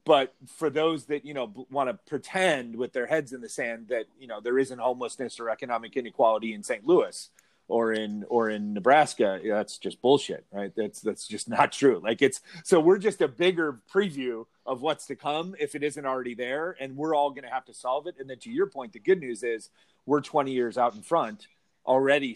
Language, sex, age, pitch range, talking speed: English, male, 30-49, 120-155 Hz, 225 wpm